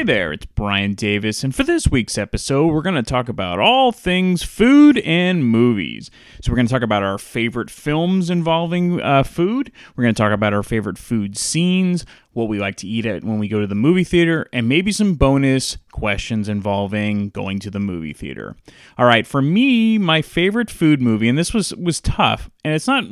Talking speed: 210 wpm